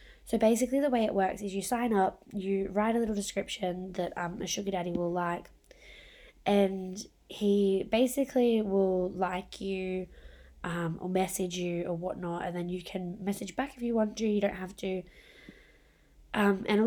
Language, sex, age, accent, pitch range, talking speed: English, female, 20-39, Australian, 185-225 Hz, 180 wpm